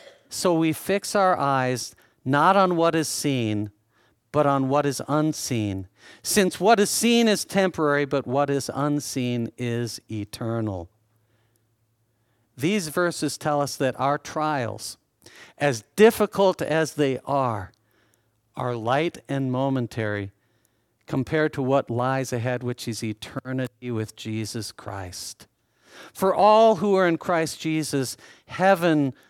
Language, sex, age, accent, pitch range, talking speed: English, male, 50-69, American, 115-160 Hz, 125 wpm